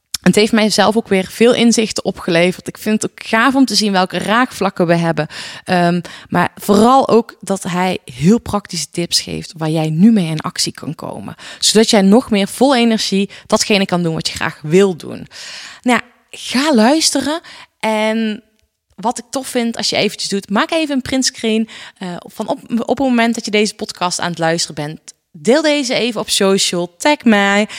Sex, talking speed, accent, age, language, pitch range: female, 195 wpm, Dutch, 20-39, Dutch, 175-230 Hz